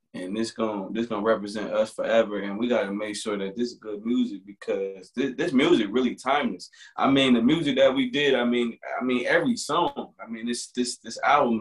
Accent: American